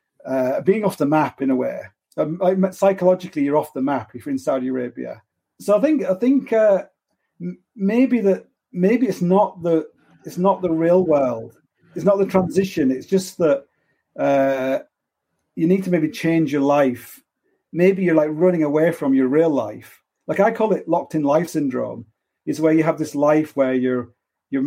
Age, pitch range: 40-59, 140-185 Hz